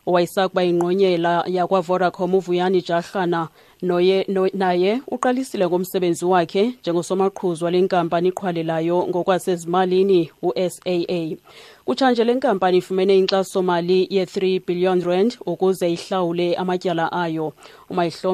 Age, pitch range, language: 30-49, 160-195 Hz, English